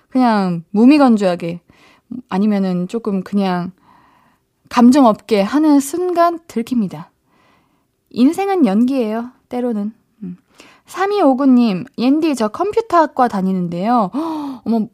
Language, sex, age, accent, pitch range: Korean, female, 20-39, native, 205-310 Hz